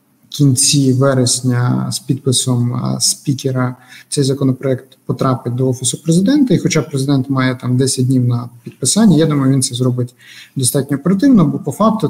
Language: Ukrainian